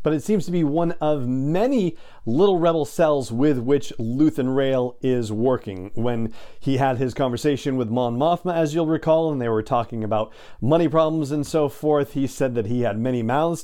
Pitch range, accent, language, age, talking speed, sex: 115-150 Hz, American, English, 40-59, 200 wpm, male